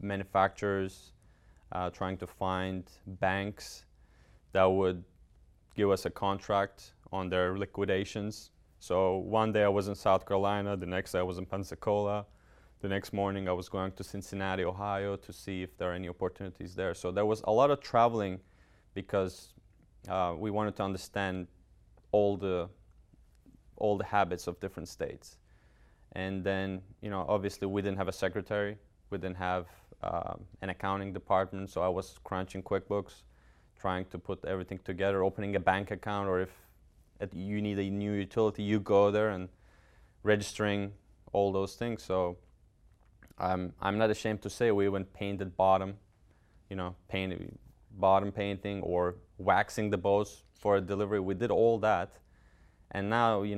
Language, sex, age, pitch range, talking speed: English, male, 30-49, 90-100 Hz, 160 wpm